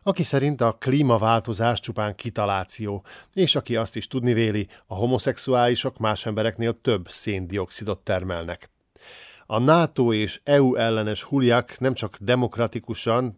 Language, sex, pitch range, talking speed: Hungarian, male, 105-125 Hz, 120 wpm